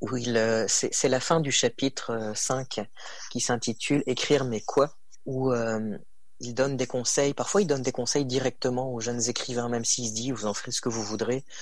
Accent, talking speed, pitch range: French, 205 wpm, 115-135 Hz